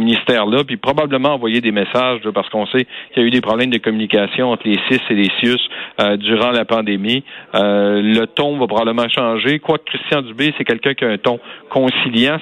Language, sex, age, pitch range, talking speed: French, male, 40-59, 115-140 Hz, 215 wpm